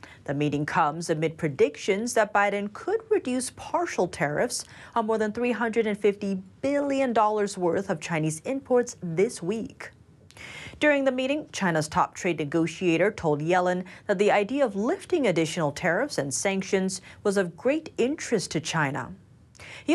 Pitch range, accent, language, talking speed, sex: 165-240 Hz, American, English, 140 wpm, female